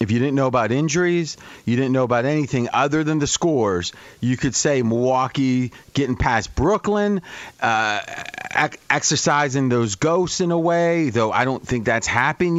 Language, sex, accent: English, male, American